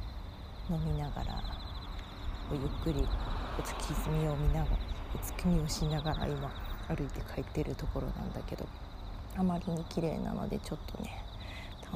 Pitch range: 90-115 Hz